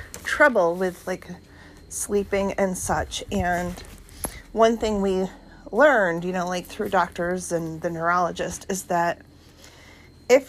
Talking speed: 125 wpm